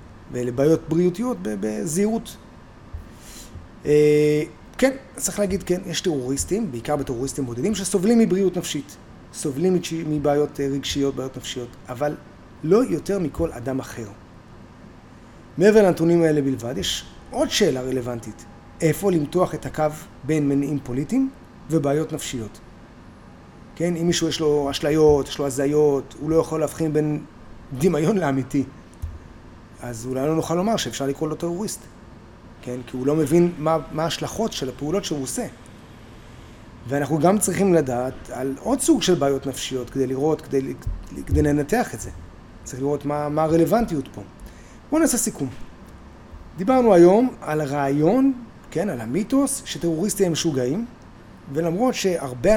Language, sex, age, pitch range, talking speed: Hebrew, male, 30-49, 125-175 Hz, 135 wpm